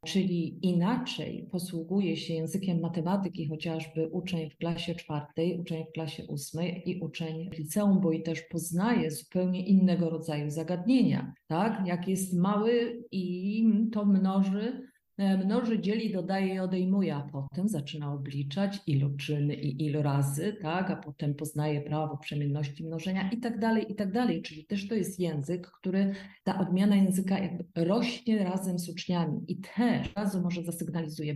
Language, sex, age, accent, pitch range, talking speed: Polish, female, 40-59, native, 165-200 Hz, 150 wpm